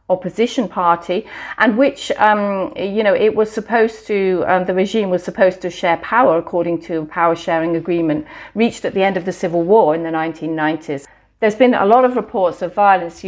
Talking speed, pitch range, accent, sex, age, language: 195 wpm, 175-210 Hz, British, female, 40-59, English